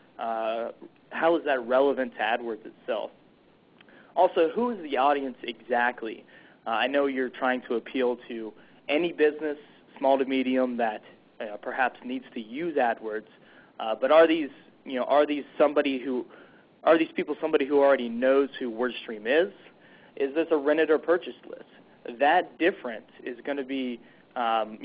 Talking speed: 165 wpm